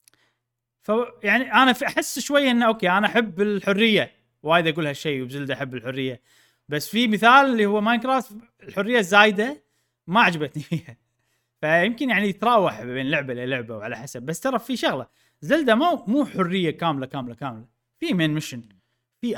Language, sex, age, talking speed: Arabic, male, 30-49, 155 wpm